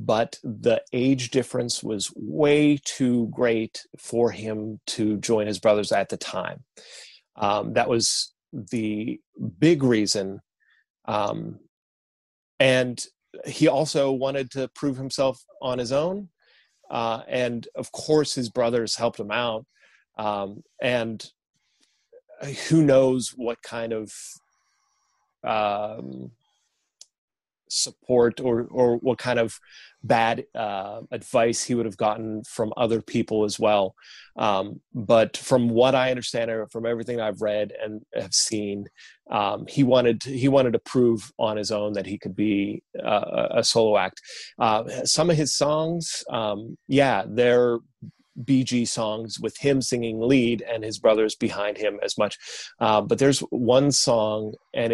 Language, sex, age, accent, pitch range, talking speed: English, male, 30-49, American, 110-130 Hz, 140 wpm